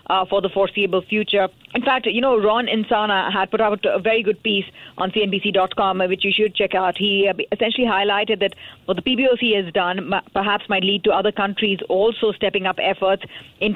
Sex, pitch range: female, 185-210 Hz